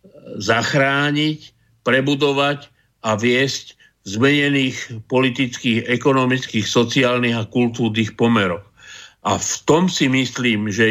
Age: 50-69